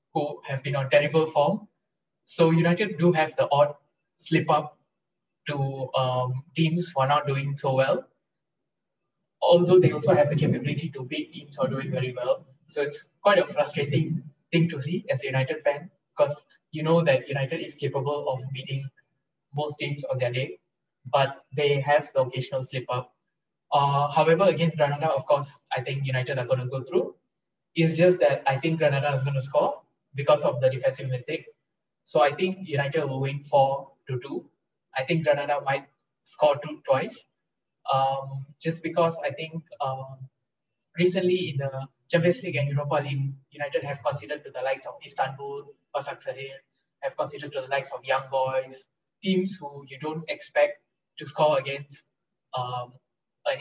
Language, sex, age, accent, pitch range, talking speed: English, male, 20-39, Indian, 135-165 Hz, 175 wpm